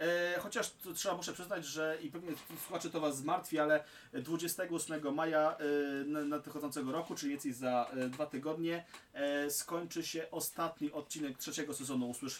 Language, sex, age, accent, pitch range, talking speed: Polish, male, 30-49, native, 115-150 Hz, 140 wpm